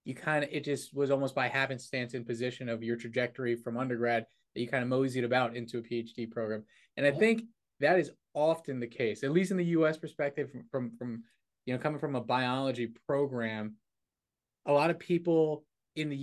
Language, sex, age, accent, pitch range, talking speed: English, male, 20-39, American, 120-150 Hz, 205 wpm